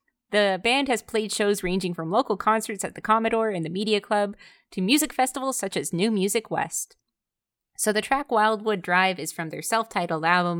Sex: female